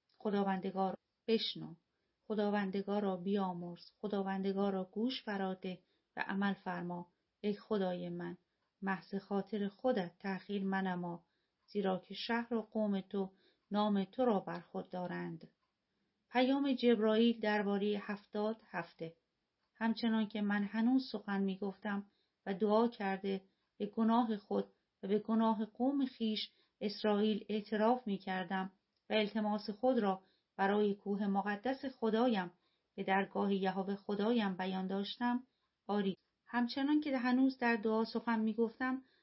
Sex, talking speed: female, 125 wpm